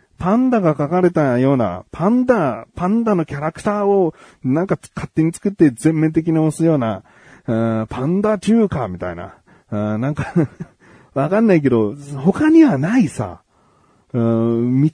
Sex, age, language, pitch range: male, 40-59, Japanese, 105-165 Hz